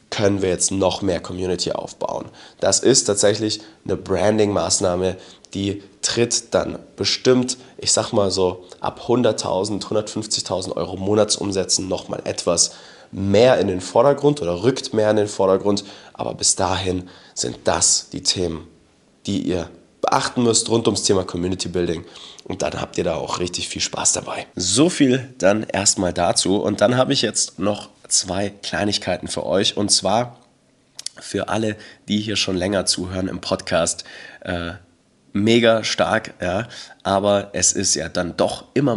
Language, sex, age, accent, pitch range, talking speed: German, male, 30-49, German, 90-110 Hz, 150 wpm